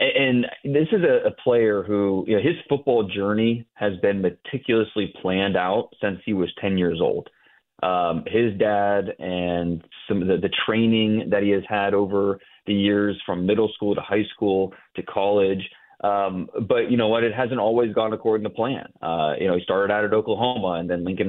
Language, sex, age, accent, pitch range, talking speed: English, male, 30-49, American, 100-120 Hz, 195 wpm